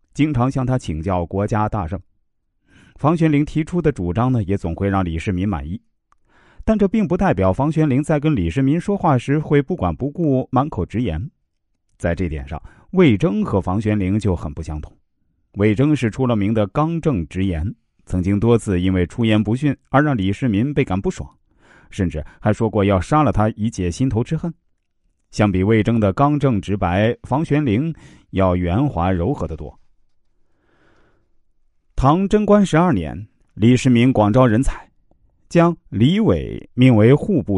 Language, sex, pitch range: Chinese, male, 95-145 Hz